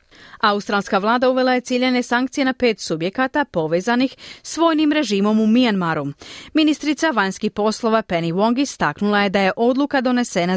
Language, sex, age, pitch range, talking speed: Croatian, female, 30-49, 190-260 Hz, 150 wpm